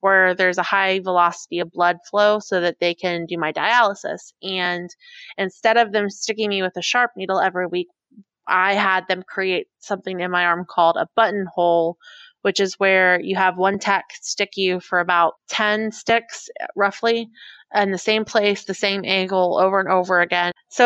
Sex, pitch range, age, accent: female, 185-225 Hz, 20-39, American